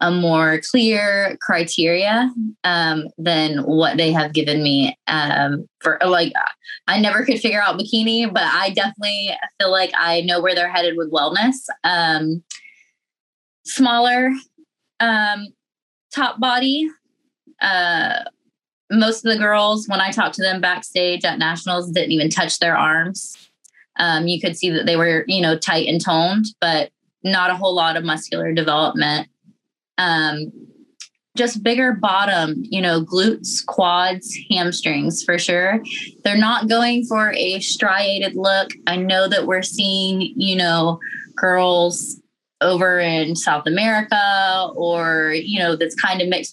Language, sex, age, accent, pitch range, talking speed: English, female, 20-39, American, 165-210 Hz, 145 wpm